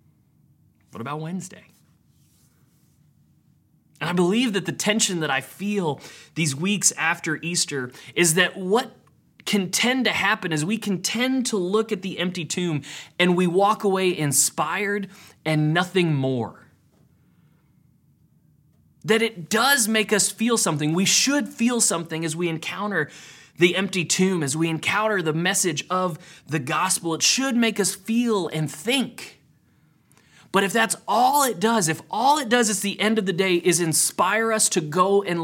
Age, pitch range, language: 30-49, 150-205 Hz, English